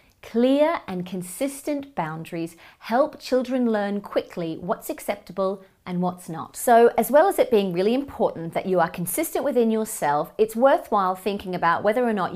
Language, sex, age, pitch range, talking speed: English, female, 30-49, 165-250 Hz, 165 wpm